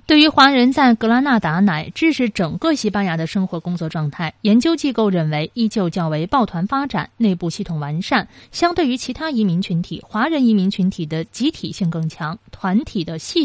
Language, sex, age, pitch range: Chinese, female, 20-39, 175-250 Hz